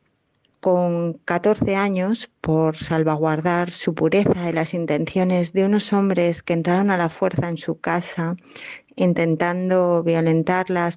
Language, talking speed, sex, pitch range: Spanish, 125 wpm, female, 165-190 Hz